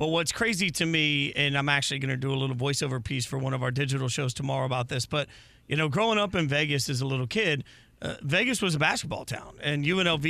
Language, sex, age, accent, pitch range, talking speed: English, male, 40-59, American, 135-160 Hz, 250 wpm